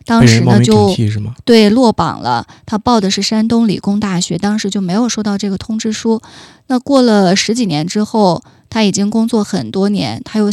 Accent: native